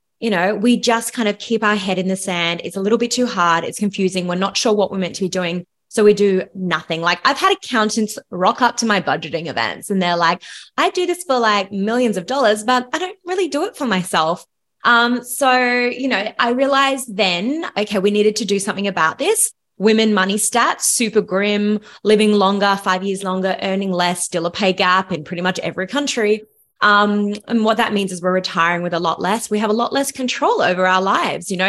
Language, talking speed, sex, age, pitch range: English, 230 wpm, female, 20-39, 175-225 Hz